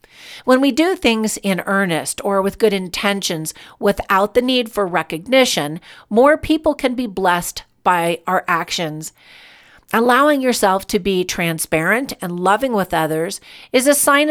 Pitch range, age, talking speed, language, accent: 175-235 Hz, 50-69, 145 wpm, English, American